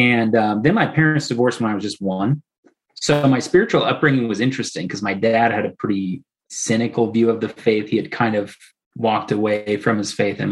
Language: English